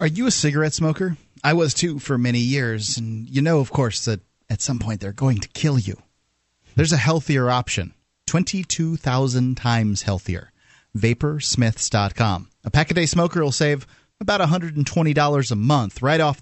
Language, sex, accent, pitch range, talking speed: English, male, American, 120-160 Hz, 165 wpm